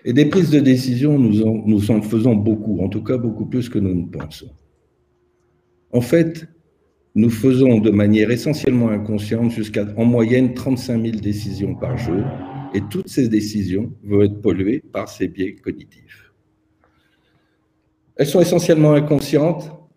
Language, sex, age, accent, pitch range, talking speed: French, male, 50-69, French, 105-150 Hz, 155 wpm